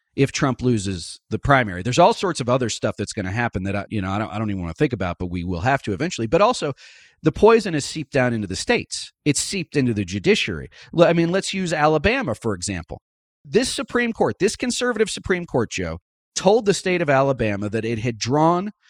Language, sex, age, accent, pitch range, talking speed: English, male, 40-59, American, 110-165 Hz, 225 wpm